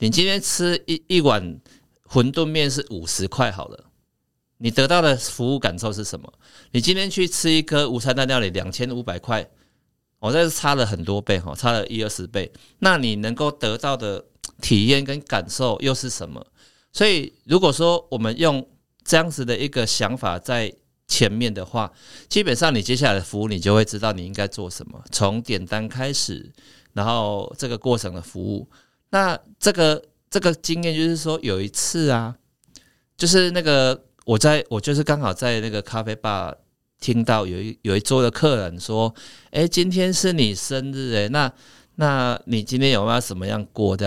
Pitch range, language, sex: 100-135 Hz, Chinese, male